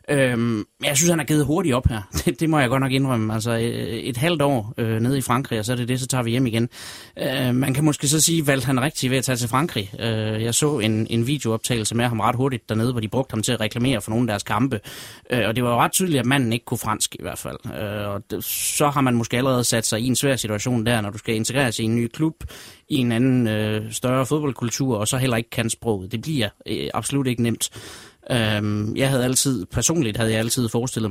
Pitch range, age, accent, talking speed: 110-135 Hz, 30-49, native, 265 wpm